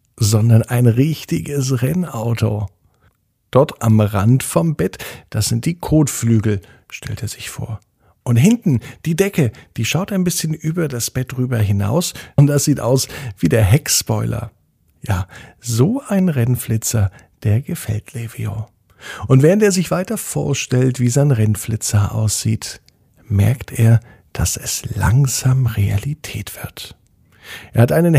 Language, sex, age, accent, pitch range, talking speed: German, male, 50-69, German, 110-140 Hz, 135 wpm